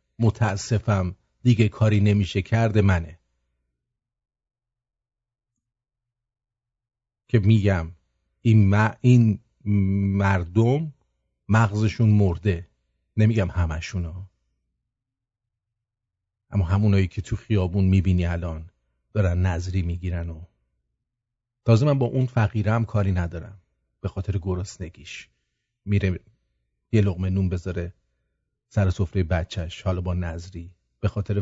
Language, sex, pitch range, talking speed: English, male, 90-115 Hz, 95 wpm